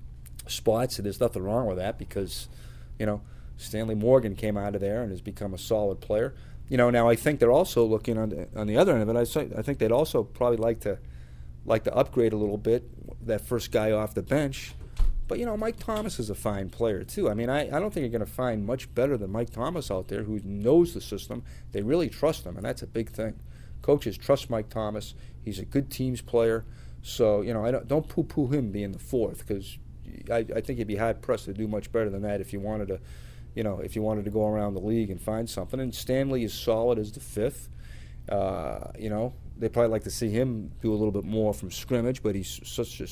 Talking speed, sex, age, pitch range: 245 wpm, male, 40-59, 95-120 Hz